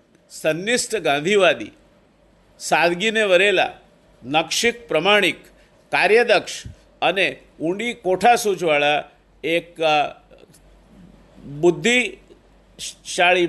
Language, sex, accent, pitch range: Gujarati, male, native, 150-190 Hz